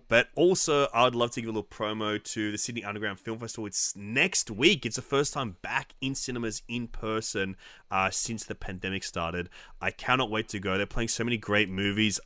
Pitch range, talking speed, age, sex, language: 95-115 Hz, 210 wpm, 20-39, male, English